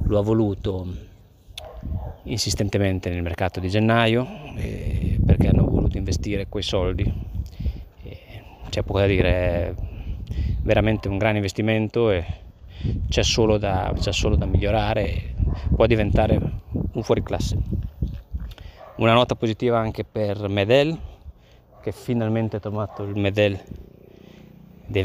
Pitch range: 95-110 Hz